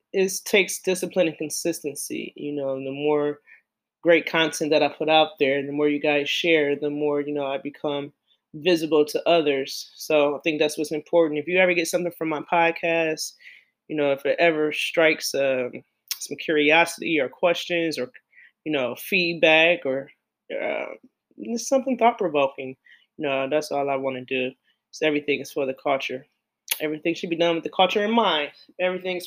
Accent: American